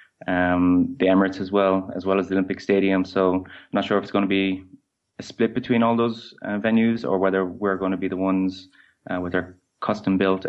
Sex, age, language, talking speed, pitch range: male, 20-39, English, 225 wpm, 95-100 Hz